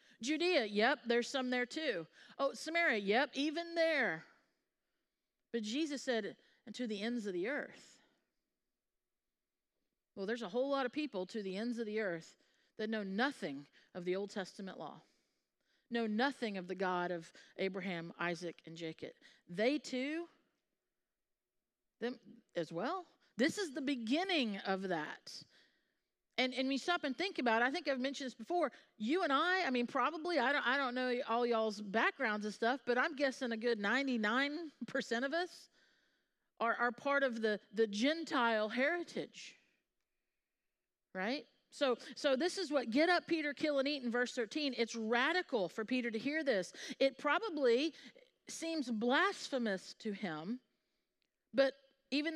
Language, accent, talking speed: English, American, 160 wpm